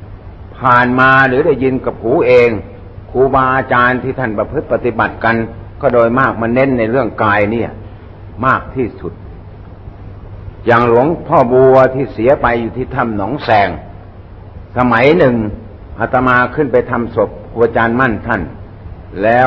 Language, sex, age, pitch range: Thai, male, 60-79, 100-125 Hz